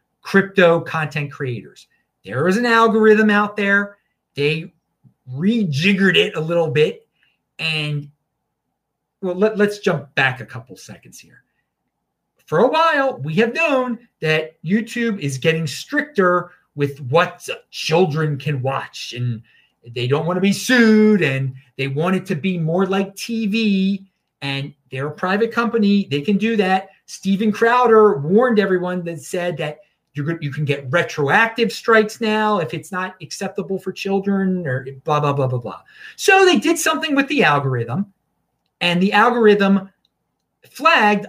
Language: English